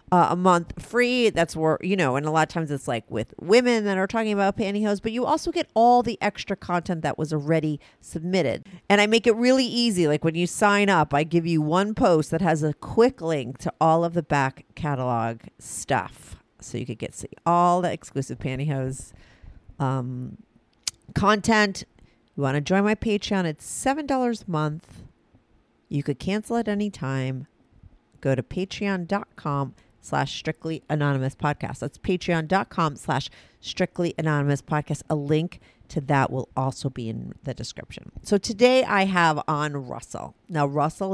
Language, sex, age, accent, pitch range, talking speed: English, female, 40-59, American, 140-205 Hz, 175 wpm